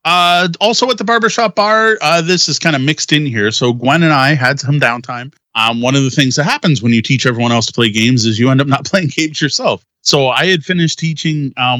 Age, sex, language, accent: 30-49, male, English, American